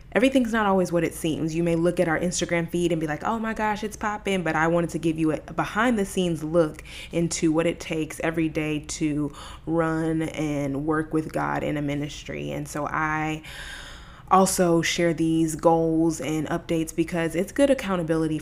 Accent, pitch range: American, 150-170 Hz